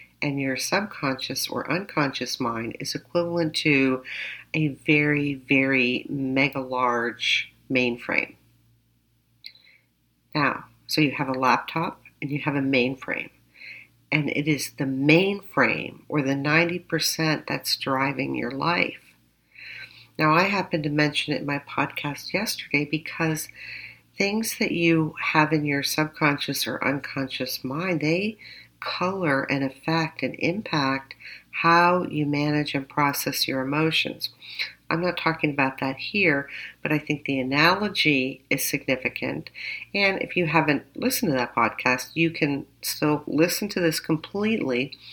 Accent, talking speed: American, 135 wpm